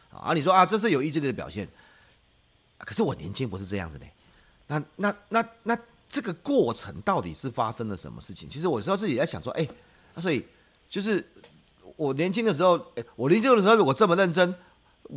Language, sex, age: Chinese, male, 30-49